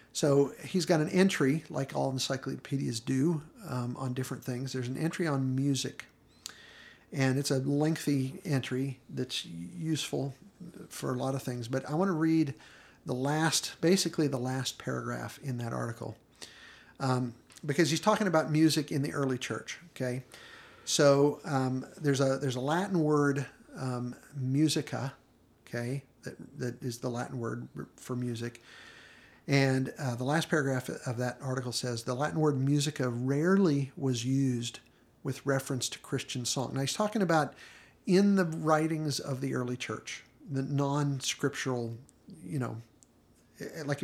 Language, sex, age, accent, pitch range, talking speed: English, male, 50-69, American, 125-150 Hz, 150 wpm